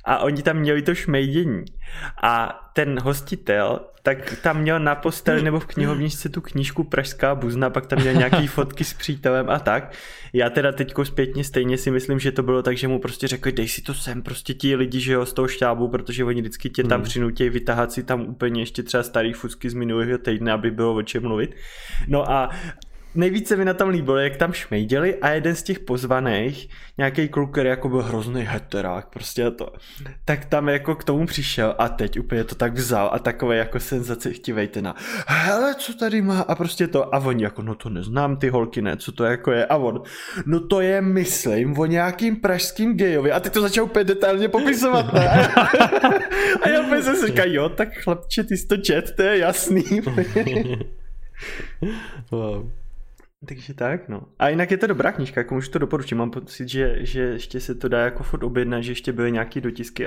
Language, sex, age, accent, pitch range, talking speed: Czech, male, 20-39, native, 120-155 Hz, 205 wpm